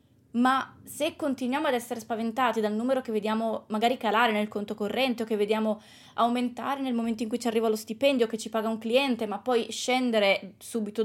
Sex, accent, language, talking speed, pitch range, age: female, native, Italian, 195 wpm, 200-240 Hz, 20-39